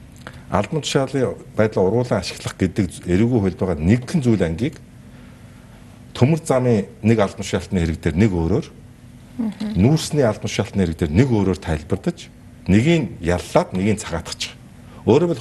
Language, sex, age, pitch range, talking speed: English, male, 60-79, 95-140 Hz, 125 wpm